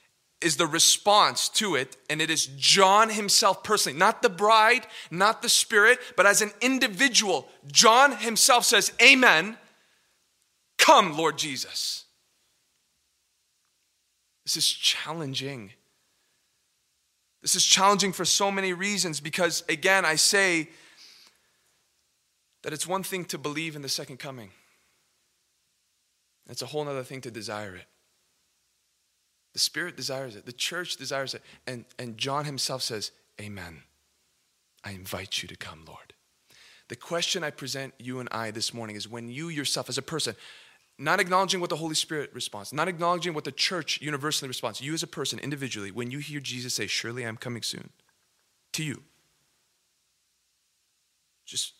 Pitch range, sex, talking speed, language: 125-185 Hz, male, 145 wpm, English